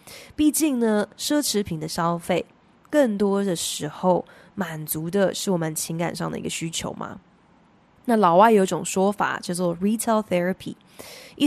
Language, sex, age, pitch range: Chinese, female, 20-39, 180-230 Hz